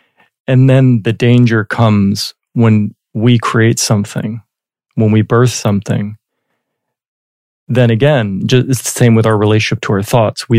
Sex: male